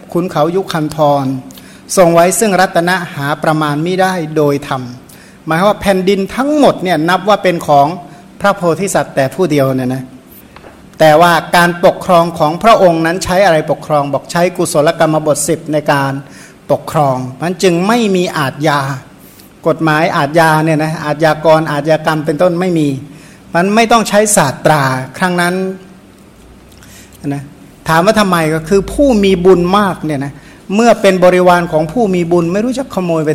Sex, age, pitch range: male, 60-79, 150-185 Hz